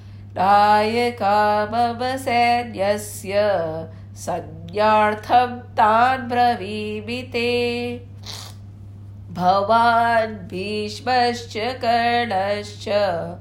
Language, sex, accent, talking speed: English, female, Indian, 50 wpm